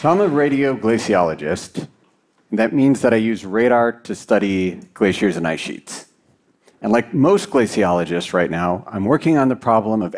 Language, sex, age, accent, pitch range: Chinese, male, 40-59, American, 105-135 Hz